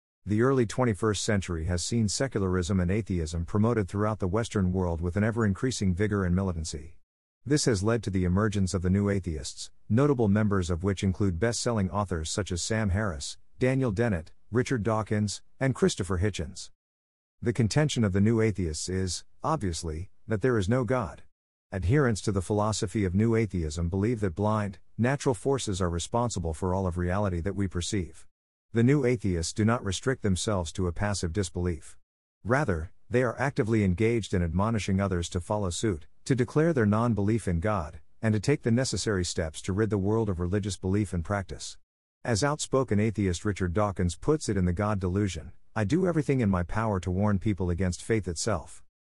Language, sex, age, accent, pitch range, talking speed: English, male, 50-69, American, 90-115 Hz, 180 wpm